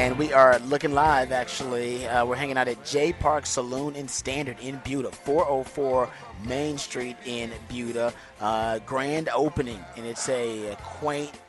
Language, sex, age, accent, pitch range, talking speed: English, male, 30-49, American, 110-130 Hz, 155 wpm